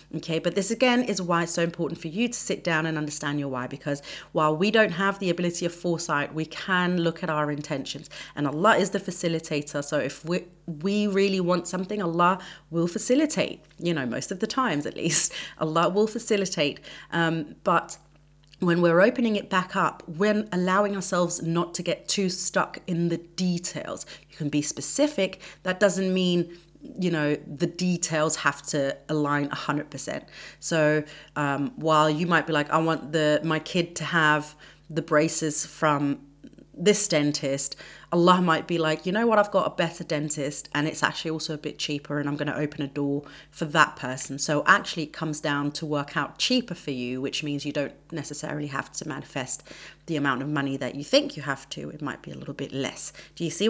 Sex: female